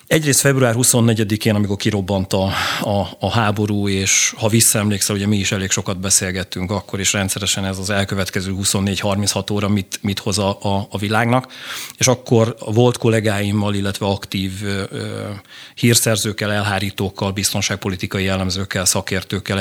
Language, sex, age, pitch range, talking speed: Hungarian, male, 30-49, 100-115 Hz, 140 wpm